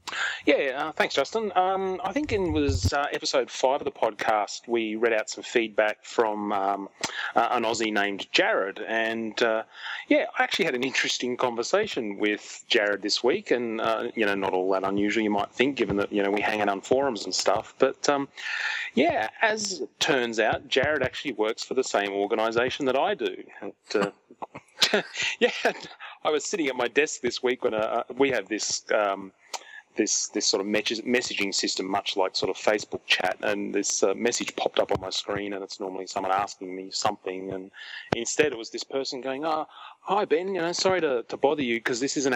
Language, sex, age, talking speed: English, male, 30-49, 205 wpm